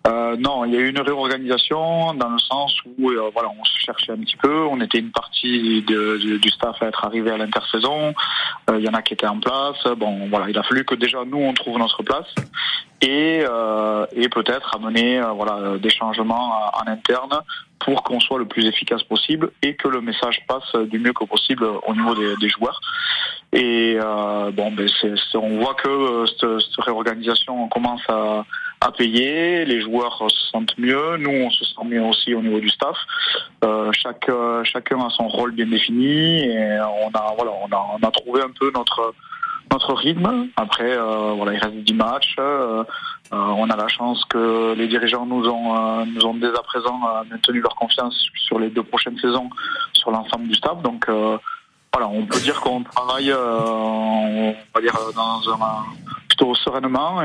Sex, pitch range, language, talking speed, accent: male, 110-125 Hz, French, 205 wpm, French